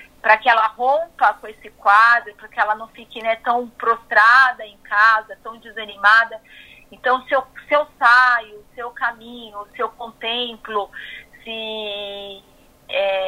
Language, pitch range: Portuguese, 220-280 Hz